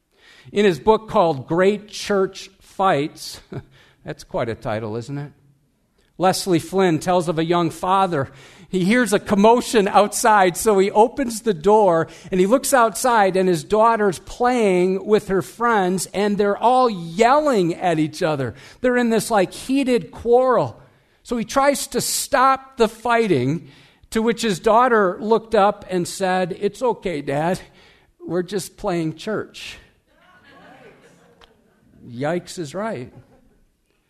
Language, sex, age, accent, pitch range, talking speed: English, male, 50-69, American, 145-220 Hz, 140 wpm